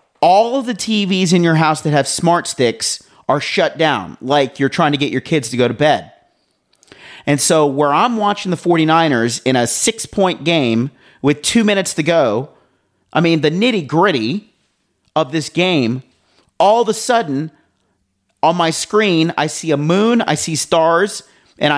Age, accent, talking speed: 40-59, American, 175 wpm